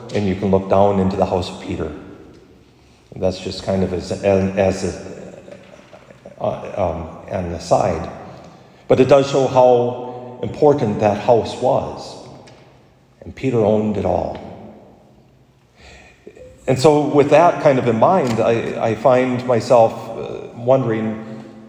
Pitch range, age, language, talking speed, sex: 100-135 Hz, 40-59, English, 130 wpm, male